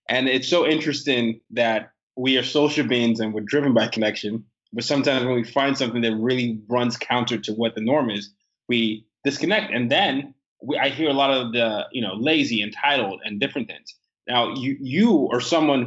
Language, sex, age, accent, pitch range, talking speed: English, male, 20-39, American, 110-135 Hz, 195 wpm